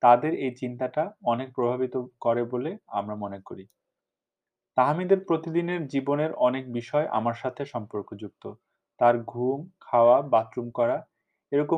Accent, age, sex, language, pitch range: native, 30-49, male, Bengali, 120-140 Hz